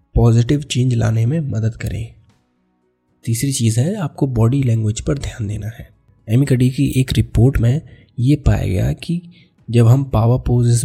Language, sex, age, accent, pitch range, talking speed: Hindi, male, 20-39, native, 110-125 Hz, 160 wpm